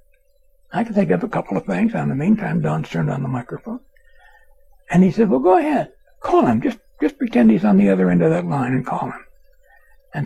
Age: 60-79